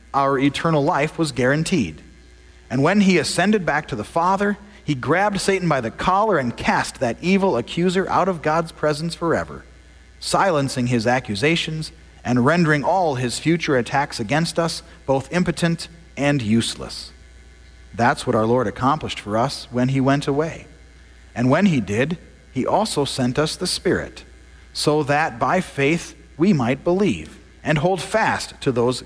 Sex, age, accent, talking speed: male, 40-59, American, 160 wpm